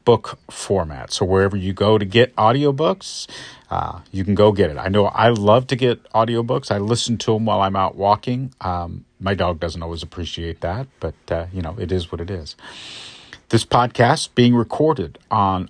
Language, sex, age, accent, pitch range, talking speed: English, male, 50-69, American, 95-120 Hz, 195 wpm